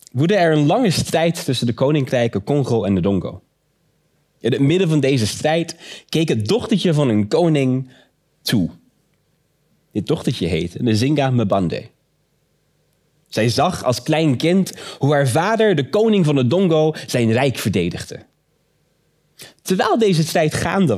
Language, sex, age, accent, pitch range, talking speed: Dutch, male, 30-49, Dutch, 115-160 Hz, 145 wpm